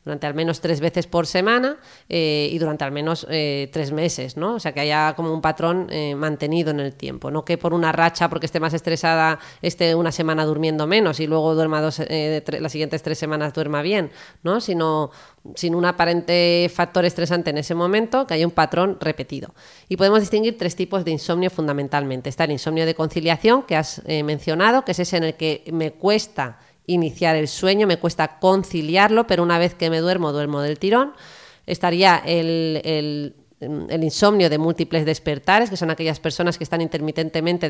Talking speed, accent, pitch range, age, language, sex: 195 wpm, Spanish, 155-175 Hz, 30-49, Spanish, female